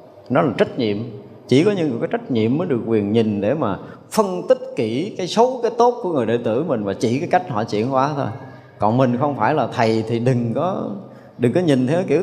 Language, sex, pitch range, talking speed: Vietnamese, male, 110-150 Hz, 245 wpm